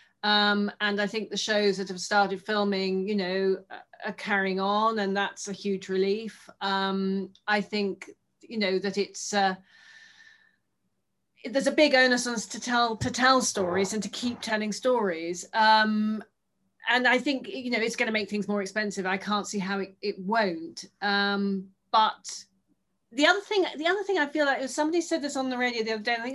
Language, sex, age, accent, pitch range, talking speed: English, female, 30-49, British, 195-245 Hz, 200 wpm